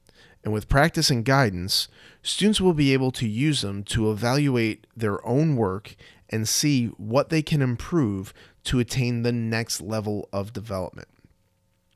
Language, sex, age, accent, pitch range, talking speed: English, male, 30-49, American, 105-135 Hz, 150 wpm